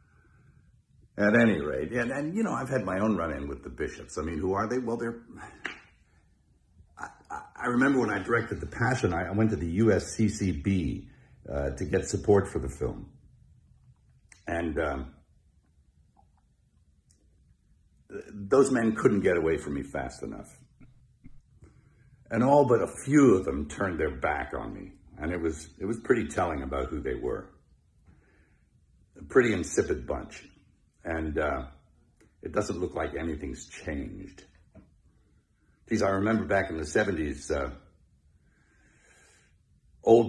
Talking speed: 145 wpm